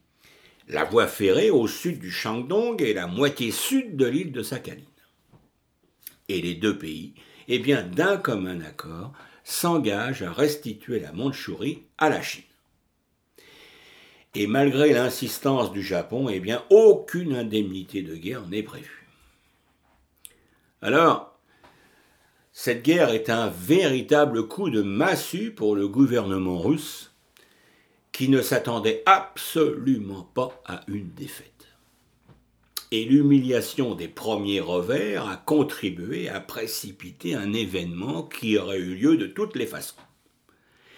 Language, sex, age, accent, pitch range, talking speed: French, male, 60-79, French, 100-155 Hz, 125 wpm